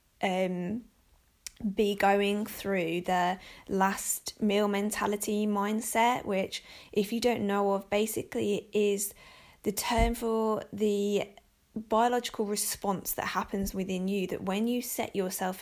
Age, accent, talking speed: 20-39, British, 125 wpm